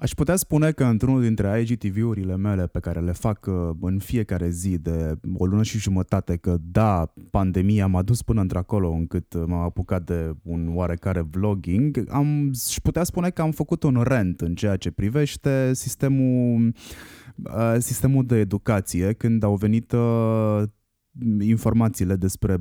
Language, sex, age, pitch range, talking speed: Romanian, male, 20-39, 95-120 Hz, 145 wpm